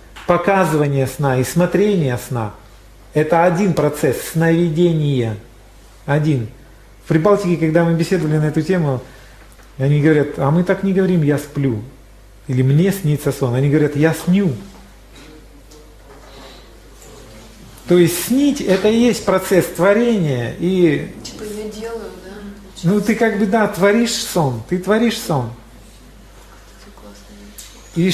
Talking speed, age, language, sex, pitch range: 120 wpm, 40-59, Russian, male, 130-190 Hz